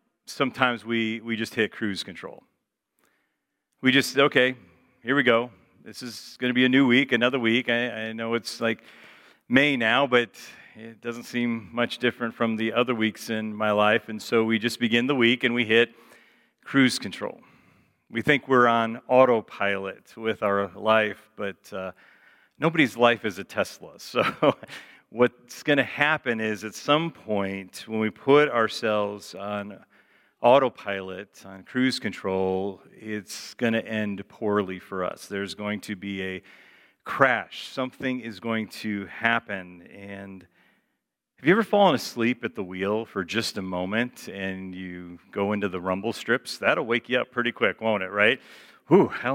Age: 40-59